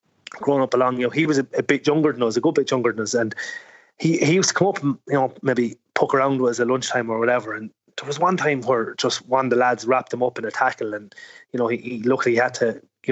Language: English